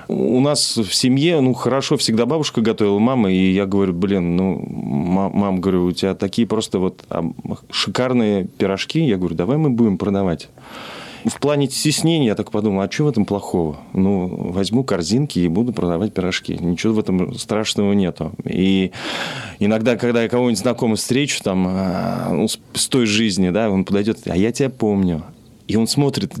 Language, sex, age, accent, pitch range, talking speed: Russian, male, 20-39, native, 100-130 Hz, 170 wpm